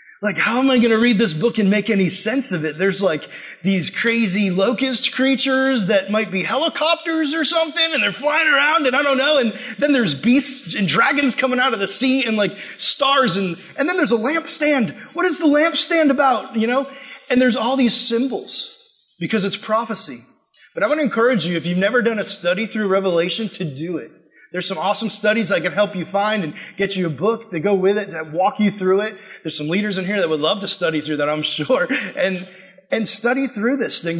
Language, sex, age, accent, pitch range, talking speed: English, male, 20-39, American, 190-265 Hz, 230 wpm